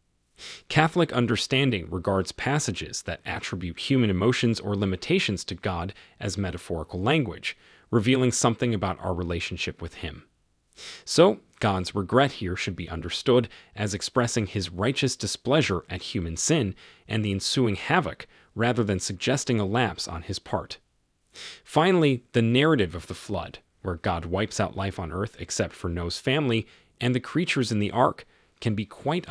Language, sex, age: English, male, 30-49